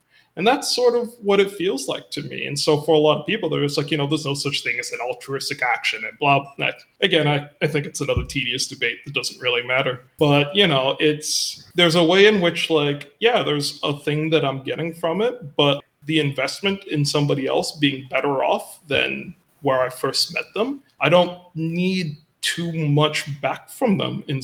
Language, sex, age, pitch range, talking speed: English, male, 20-39, 140-170 Hz, 215 wpm